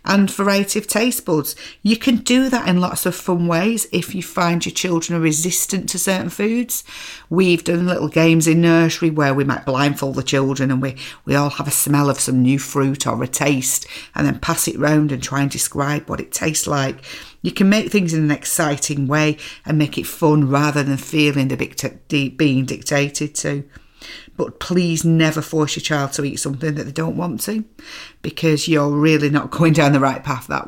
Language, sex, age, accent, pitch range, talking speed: English, female, 50-69, British, 140-180 Hz, 205 wpm